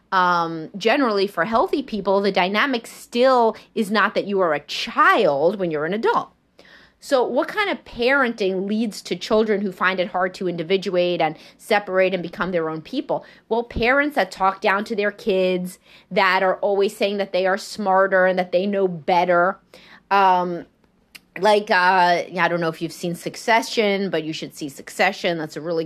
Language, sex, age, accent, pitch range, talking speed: English, female, 30-49, American, 170-210 Hz, 185 wpm